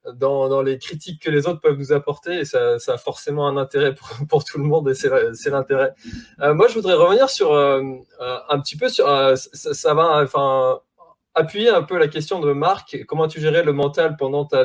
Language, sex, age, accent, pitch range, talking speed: French, male, 20-39, French, 135-205 Hz, 225 wpm